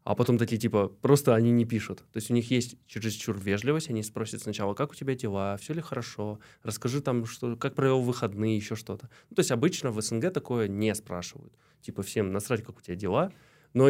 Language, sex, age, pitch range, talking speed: Russian, male, 20-39, 105-130 Hz, 215 wpm